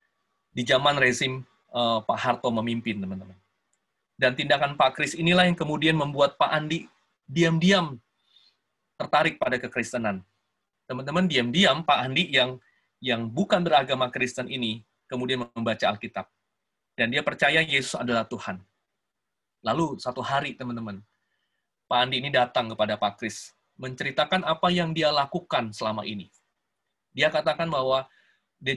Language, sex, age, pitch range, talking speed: Indonesian, male, 20-39, 125-165 Hz, 130 wpm